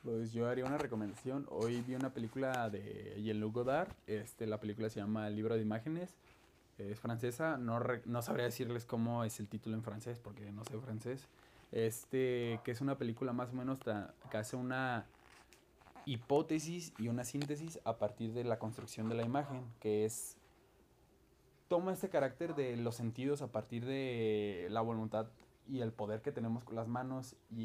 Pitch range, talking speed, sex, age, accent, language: 110-130 Hz, 180 wpm, male, 20-39, Mexican, Spanish